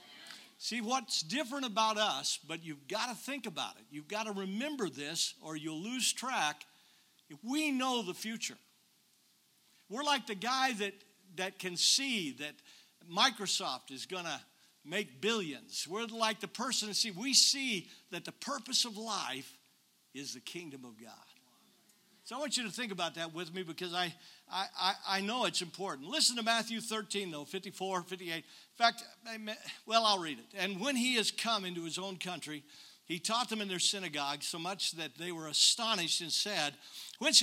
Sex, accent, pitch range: male, American, 165-225 Hz